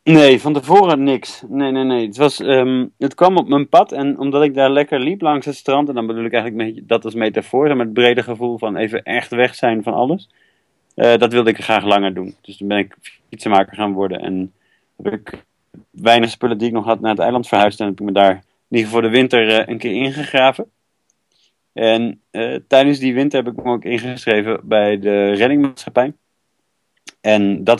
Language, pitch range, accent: Dutch, 100-125 Hz, Dutch